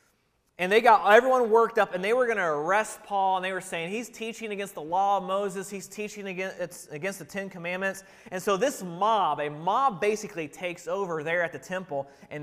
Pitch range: 165-215 Hz